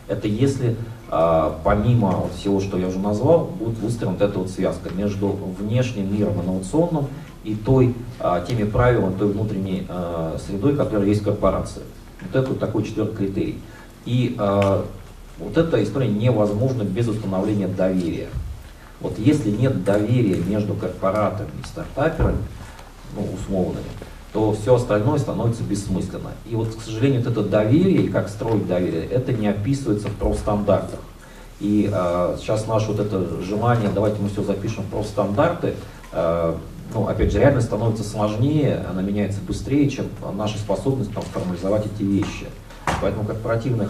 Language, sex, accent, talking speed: Russian, male, native, 140 wpm